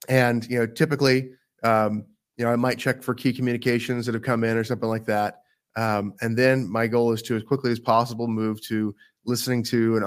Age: 30-49